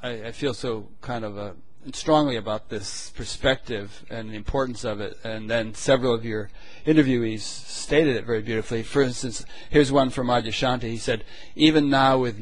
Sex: male